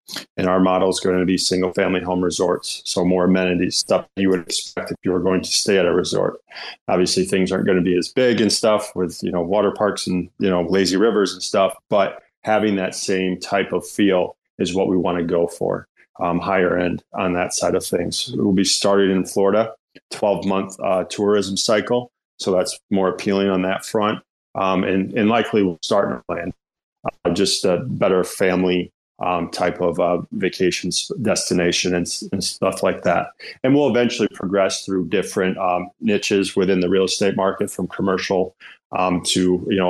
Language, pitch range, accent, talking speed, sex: English, 90-100 Hz, American, 200 wpm, male